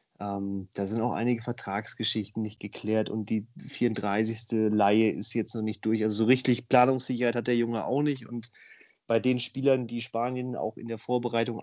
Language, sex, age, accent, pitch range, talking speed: German, male, 30-49, German, 110-125 Hz, 185 wpm